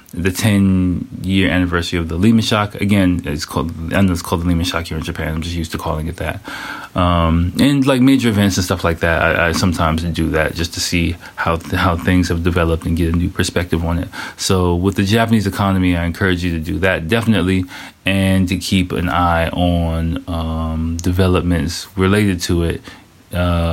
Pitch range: 85-95 Hz